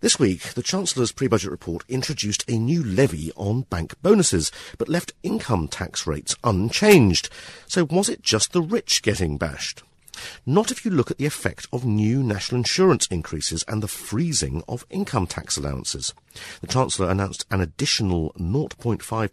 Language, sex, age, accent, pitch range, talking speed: English, male, 50-69, British, 90-140 Hz, 160 wpm